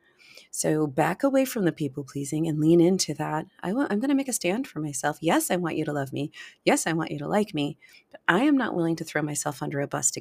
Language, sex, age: English, female, 40-59